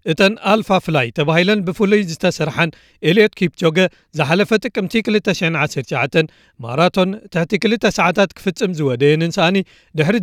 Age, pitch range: 40-59, 155-200 Hz